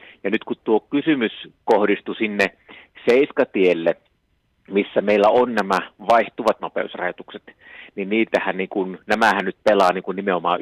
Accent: native